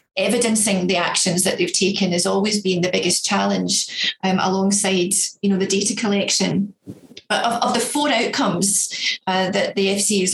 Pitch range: 190-210 Hz